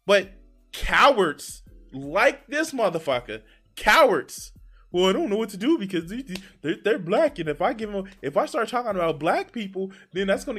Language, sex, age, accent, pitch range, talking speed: English, male, 20-39, American, 165-230 Hz, 180 wpm